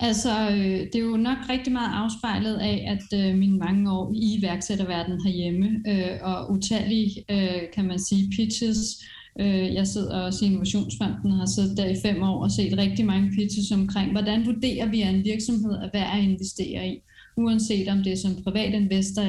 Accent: native